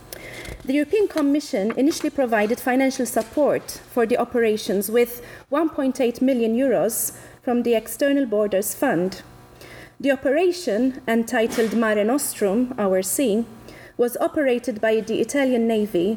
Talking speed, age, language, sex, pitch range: 120 wpm, 30-49, English, female, 210-275 Hz